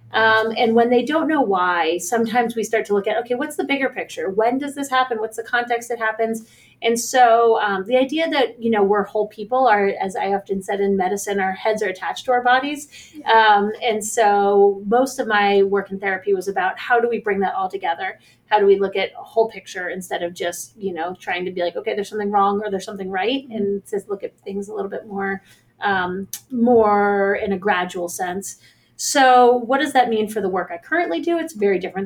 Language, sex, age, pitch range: English, female, 30-49, 200-265 Hz